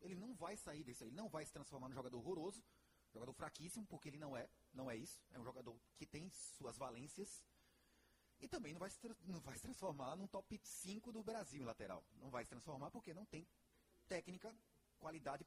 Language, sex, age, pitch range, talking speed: Portuguese, male, 30-49, 130-190 Hz, 215 wpm